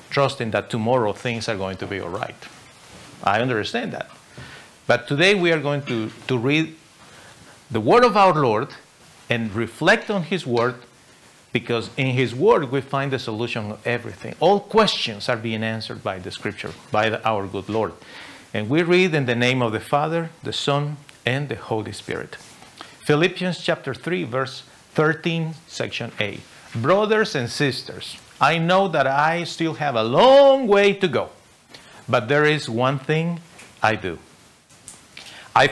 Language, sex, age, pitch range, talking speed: English, male, 50-69, 120-165 Hz, 165 wpm